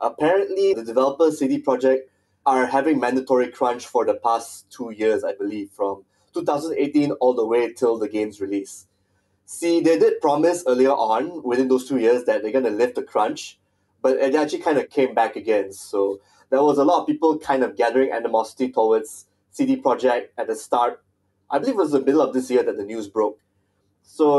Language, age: English, 20-39